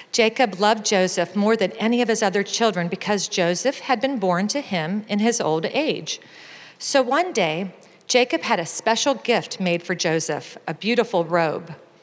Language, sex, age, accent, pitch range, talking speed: English, female, 40-59, American, 180-240 Hz, 170 wpm